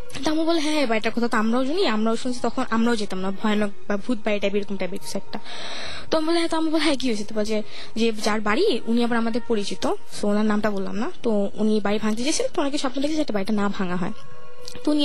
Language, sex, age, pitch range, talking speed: Bengali, female, 20-39, 210-285 Hz, 50 wpm